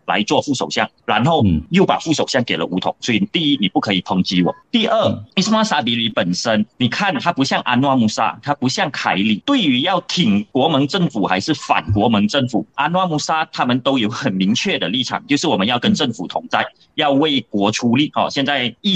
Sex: male